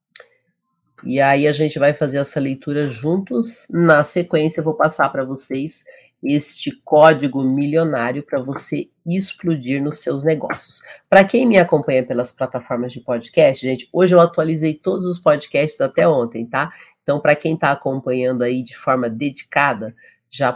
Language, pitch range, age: Portuguese, 130-170 Hz, 40-59